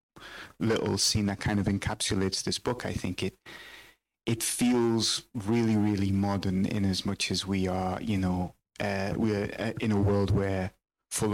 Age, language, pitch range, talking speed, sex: 30-49, English, 95-105 Hz, 165 wpm, male